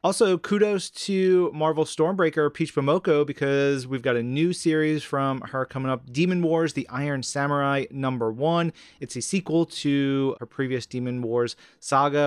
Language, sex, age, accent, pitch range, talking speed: English, male, 30-49, American, 125-150 Hz, 160 wpm